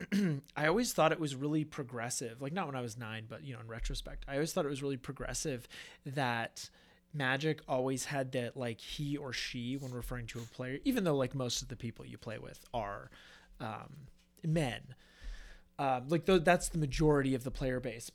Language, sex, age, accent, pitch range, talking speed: English, male, 30-49, American, 125-160 Hz, 205 wpm